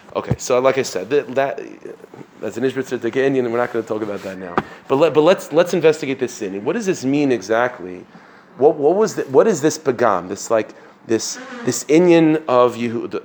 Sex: male